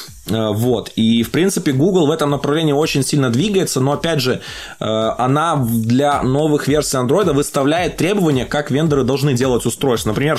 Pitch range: 125-155 Hz